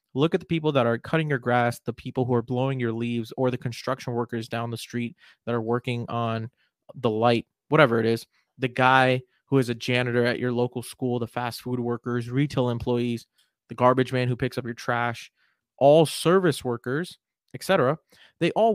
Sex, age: male, 20-39